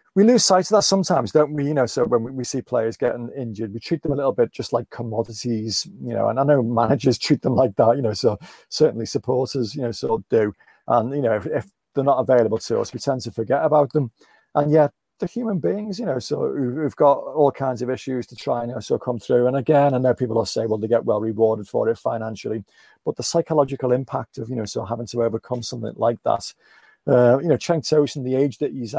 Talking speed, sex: 255 wpm, male